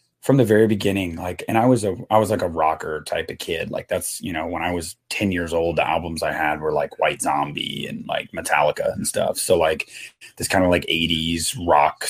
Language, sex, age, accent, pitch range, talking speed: English, male, 30-49, American, 95-110 Hz, 240 wpm